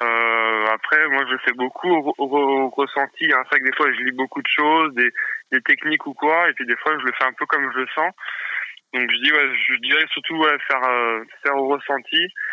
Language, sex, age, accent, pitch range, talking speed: French, male, 20-39, French, 115-140 Hz, 240 wpm